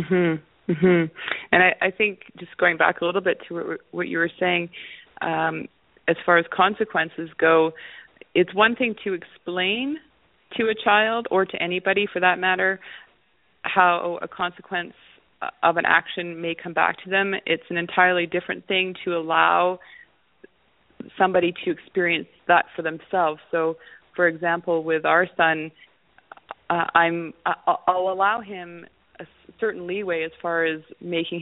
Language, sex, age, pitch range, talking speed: English, female, 30-49, 170-195 Hz, 155 wpm